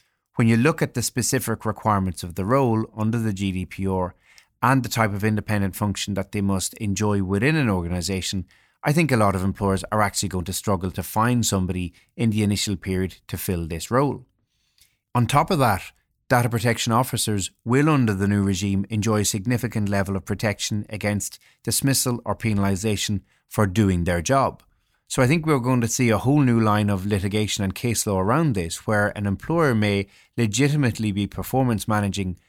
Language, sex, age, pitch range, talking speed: English, male, 30-49, 95-120 Hz, 185 wpm